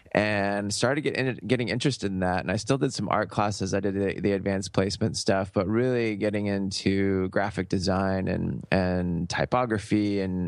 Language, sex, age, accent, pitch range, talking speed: English, male, 20-39, American, 95-110 Hz, 170 wpm